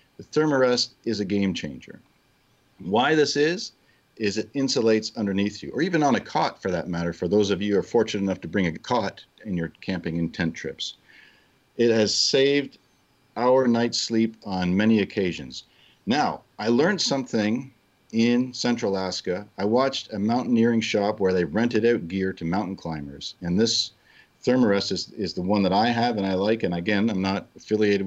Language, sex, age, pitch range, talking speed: English, male, 50-69, 95-125 Hz, 185 wpm